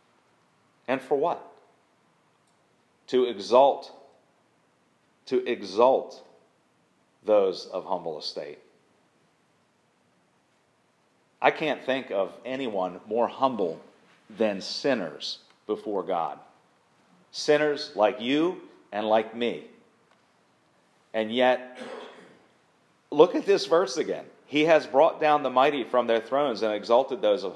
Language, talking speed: English, 105 wpm